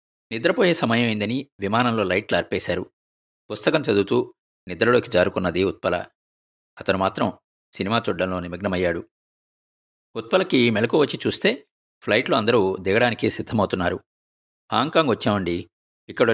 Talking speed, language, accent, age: 100 wpm, Telugu, native, 50-69